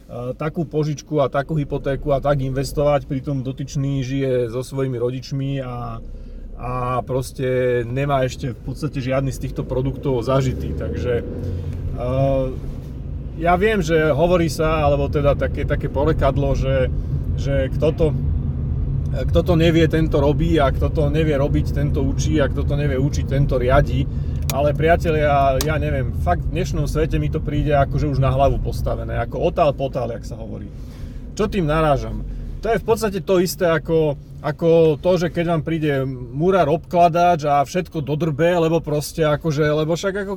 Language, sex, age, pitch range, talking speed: Slovak, male, 30-49, 130-160 Hz, 165 wpm